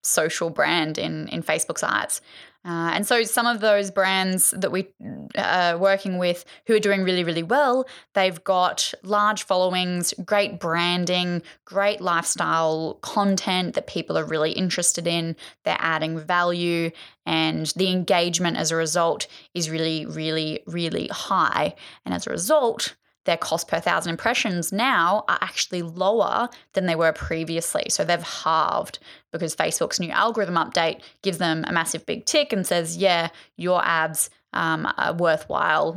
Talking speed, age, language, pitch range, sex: 150 wpm, 10-29, English, 165-195 Hz, female